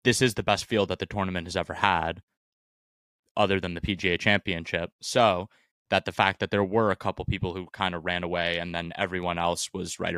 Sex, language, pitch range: male, English, 90-110 Hz